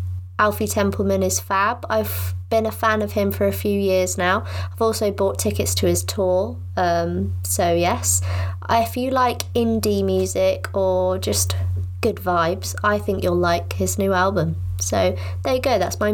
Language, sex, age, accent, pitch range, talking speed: English, female, 20-39, British, 90-105 Hz, 175 wpm